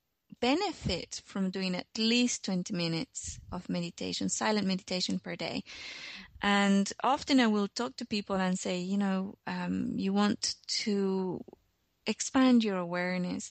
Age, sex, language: 20-39, female, English